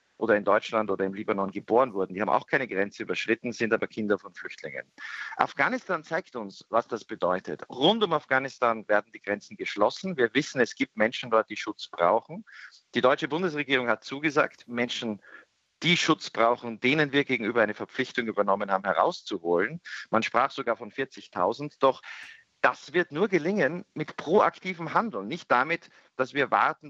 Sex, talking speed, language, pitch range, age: male, 170 wpm, German, 105-150 Hz, 50-69